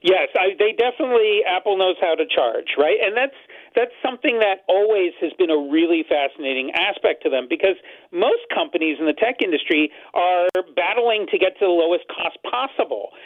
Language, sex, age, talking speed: English, male, 40-59, 175 wpm